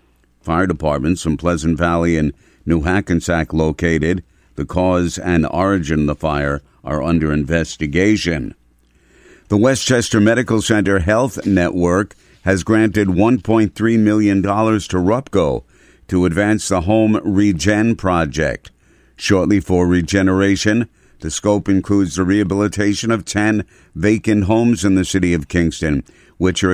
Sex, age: male, 50-69